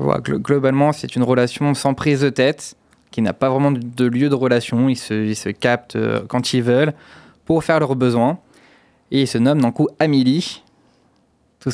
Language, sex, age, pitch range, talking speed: French, male, 20-39, 120-155 Hz, 190 wpm